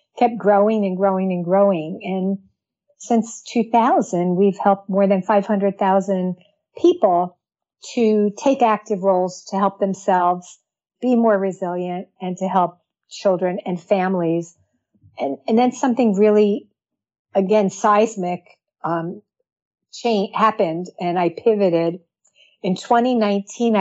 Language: English